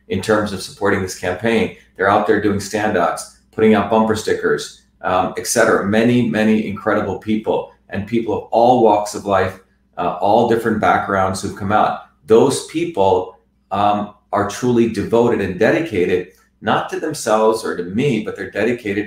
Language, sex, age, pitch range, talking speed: English, male, 40-59, 100-120 Hz, 165 wpm